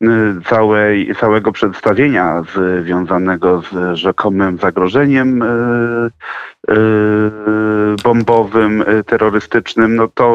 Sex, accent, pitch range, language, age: male, native, 105-140 Hz, Polish, 40-59